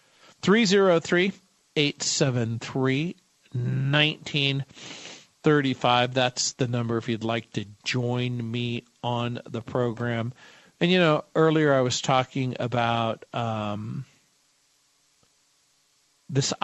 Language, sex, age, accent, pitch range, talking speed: English, male, 50-69, American, 125-150 Hz, 90 wpm